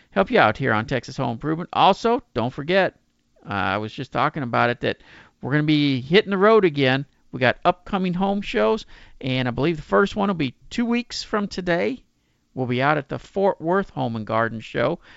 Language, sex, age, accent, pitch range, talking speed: English, male, 50-69, American, 115-175 Hz, 220 wpm